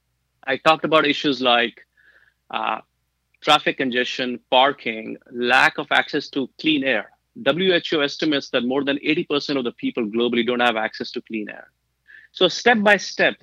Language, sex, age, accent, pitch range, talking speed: English, male, 30-49, Indian, 120-155 Hz, 155 wpm